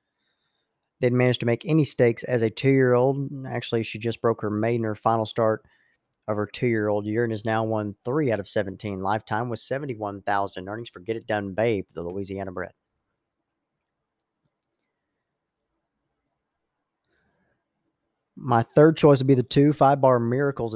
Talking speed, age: 150 wpm, 40-59